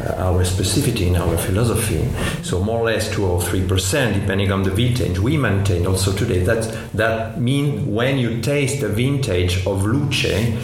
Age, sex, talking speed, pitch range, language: 50-69, male, 170 wpm, 105-130 Hz, English